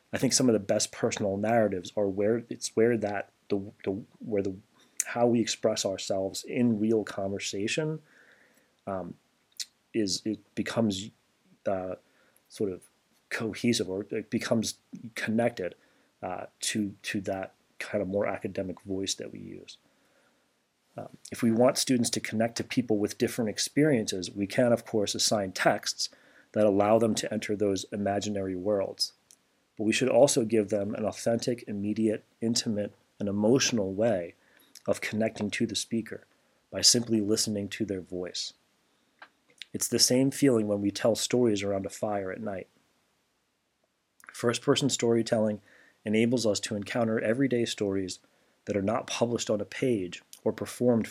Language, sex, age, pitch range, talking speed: English, male, 30-49, 100-115 Hz, 150 wpm